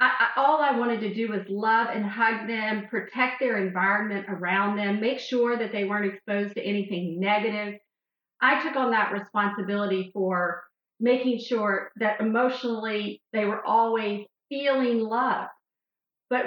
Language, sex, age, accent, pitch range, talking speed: English, female, 40-59, American, 210-255 Hz, 145 wpm